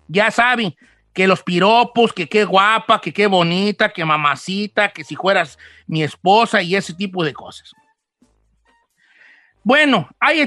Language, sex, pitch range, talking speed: Spanish, male, 200-290 Hz, 145 wpm